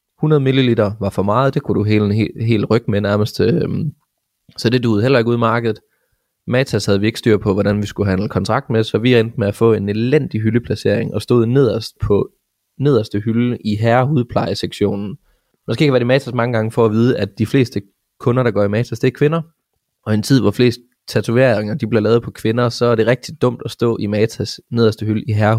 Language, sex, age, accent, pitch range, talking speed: English, male, 20-39, Danish, 100-120 Hz, 230 wpm